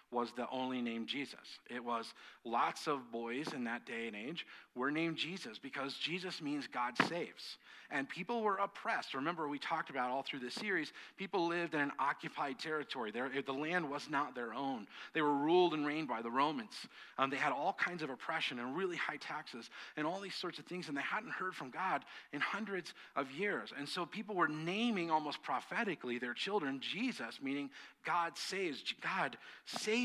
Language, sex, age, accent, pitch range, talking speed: English, male, 40-59, American, 125-175 Hz, 195 wpm